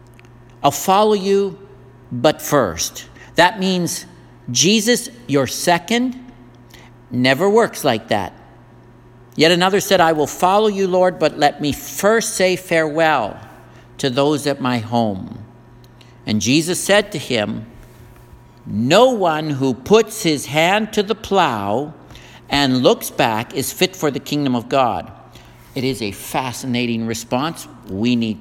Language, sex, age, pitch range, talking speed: English, male, 60-79, 120-185 Hz, 135 wpm